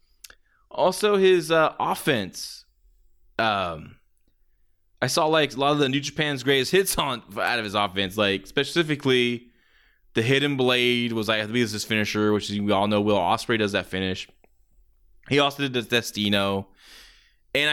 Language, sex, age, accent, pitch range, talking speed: English, male, 20-39, American, 100-140 Hz, 155 wpm